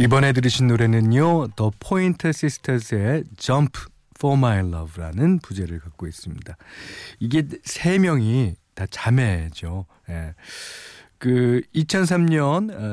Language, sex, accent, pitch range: Korean, male, native, 100-160 Hz